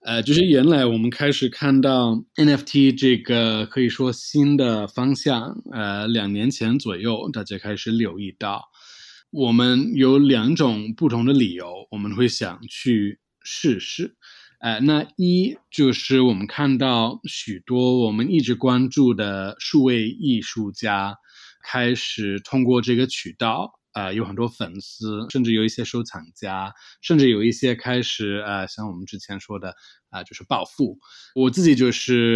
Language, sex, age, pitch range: Chinese, male, 20-39, 105-130 Hz